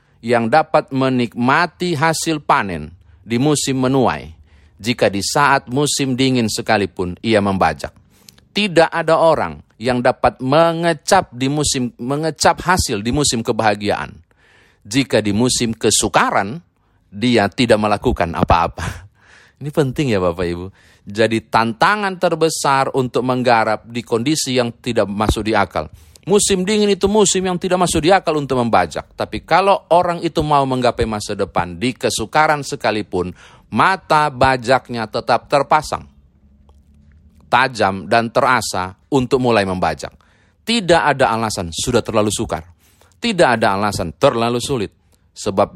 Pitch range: 95-140 Hz